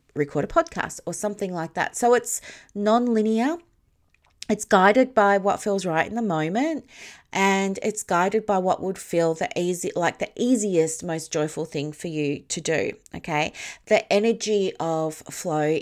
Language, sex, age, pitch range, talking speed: English, female, 40-59, 160-220 Hz, 165 wpm